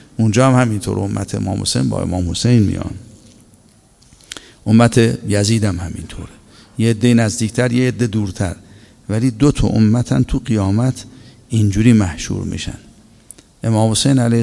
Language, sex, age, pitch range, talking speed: Persian, male, 50-69, 105-125 Hz, 135 wpm